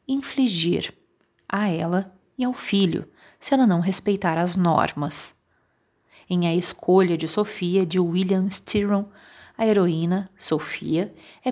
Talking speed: 125 wpm